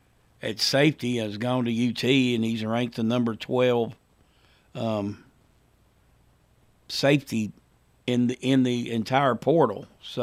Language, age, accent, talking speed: English, 60-79, American, 130 wpm